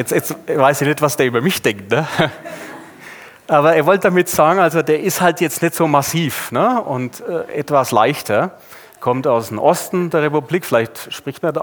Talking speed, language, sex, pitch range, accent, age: 200 wpm, German, male, 145-190 Hz, German, 30-49